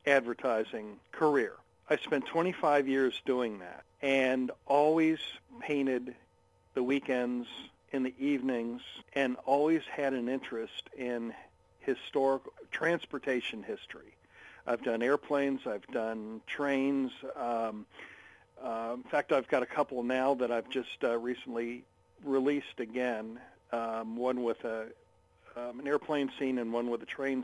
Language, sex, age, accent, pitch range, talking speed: English, male, 50-69, American, 115-135 Hz, 130 wpm